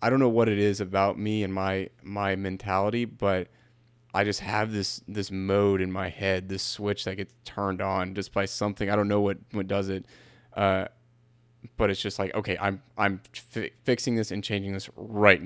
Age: 20-39